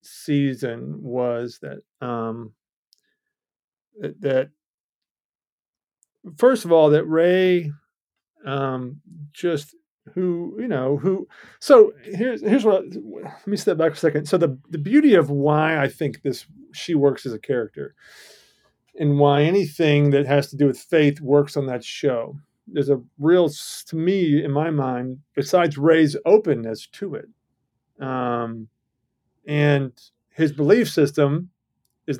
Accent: American